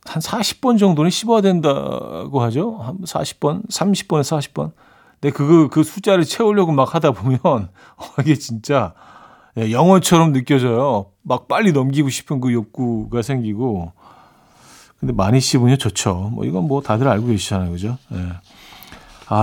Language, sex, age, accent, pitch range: Korean, male, 40-59, native, 105-155 Hz